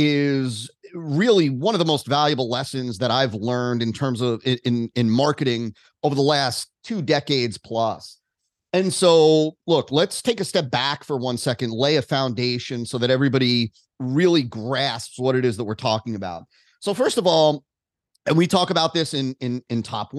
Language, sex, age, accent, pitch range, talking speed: English, male, 30-49, American, 130-180 Hz, 185 wpm